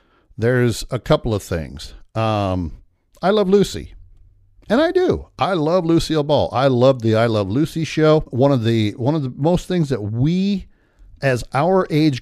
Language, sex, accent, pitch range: Japanese, male, American, 100-170 Hz